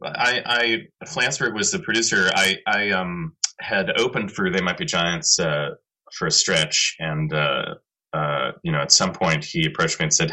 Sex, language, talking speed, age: male, English, 190 wpm, 30-49